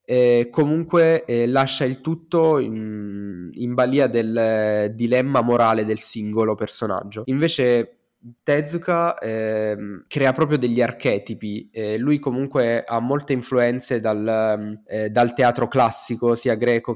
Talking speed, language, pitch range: 125 wpm, Italian, 110-130 Hz